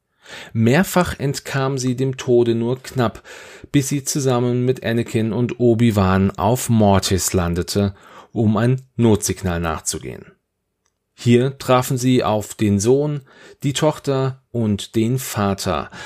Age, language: 40-59, German